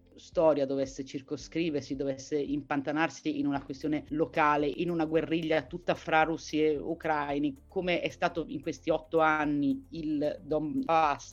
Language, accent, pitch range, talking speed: Italian, native, 145-170 Hz, 140 wpm